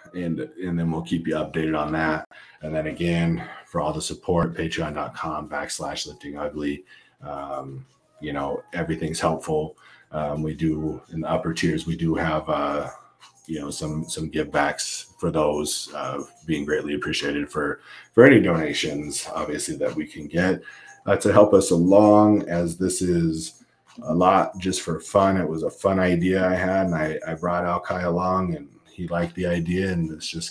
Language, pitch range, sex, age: English, 80-95 Hz, male, 40-59